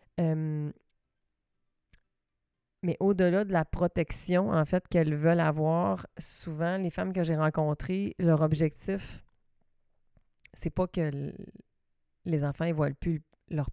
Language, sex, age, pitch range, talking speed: French, female, 30-49, 150-170 Hz, 120 wpm